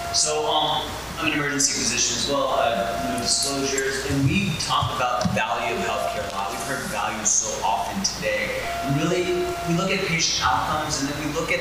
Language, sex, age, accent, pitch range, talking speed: English, male, 30-49, American, 135-175 Hz, 205 wpm